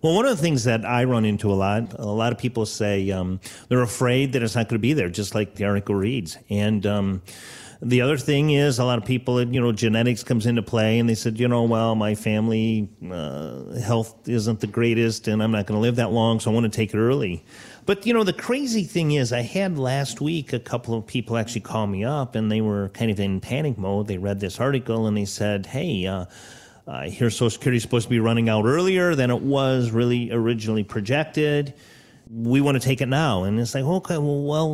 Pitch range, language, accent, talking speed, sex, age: 110-130 Hz, English, American, 245 wpm, male, 40-59